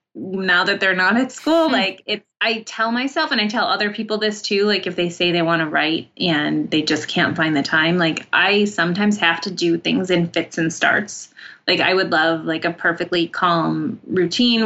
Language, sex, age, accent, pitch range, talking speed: English, female, 20-39, American, 170-210 Hz, 215 wpm